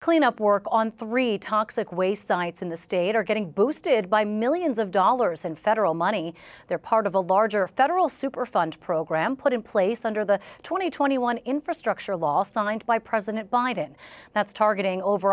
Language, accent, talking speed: English, American, 170 wpm